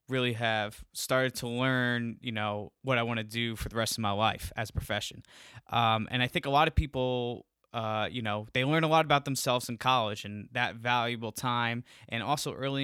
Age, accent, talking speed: 10-29, American, 220 wpm